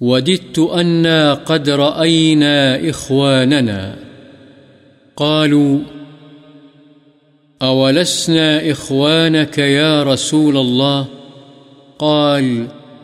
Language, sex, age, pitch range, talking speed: Urdu, male, 50-69, 135-155 Hz, 55 wpm